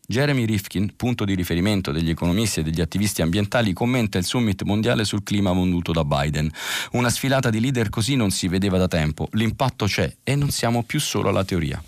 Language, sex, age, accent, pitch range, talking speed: Italian, male, 40-59, native, 90-115 Hz, 195 wpm